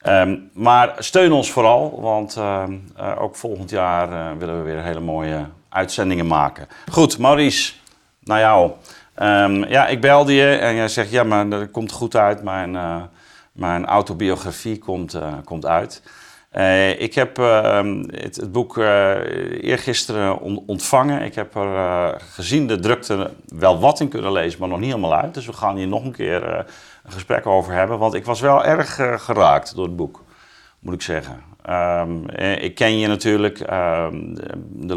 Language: Dutch